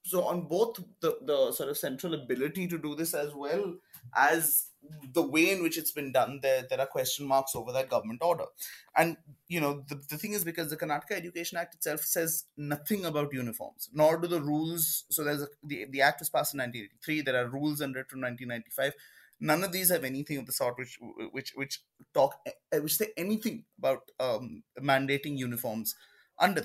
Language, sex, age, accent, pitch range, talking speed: English, male, 20-39, Indian, 140-170 Hz, 200 wpm